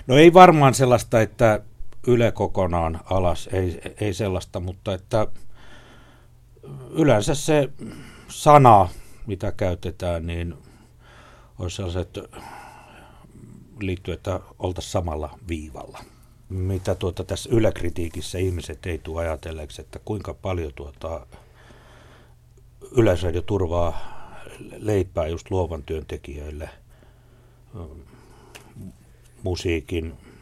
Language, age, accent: Finnish, 60-79, native